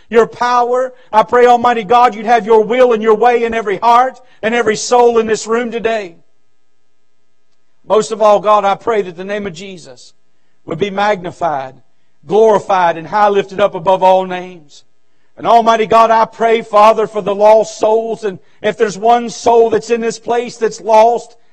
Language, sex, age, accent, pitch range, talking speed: English, male, 50-69, American, 195-235 Hz, 185 wpm